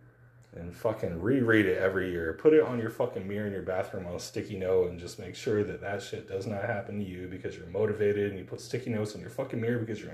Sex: male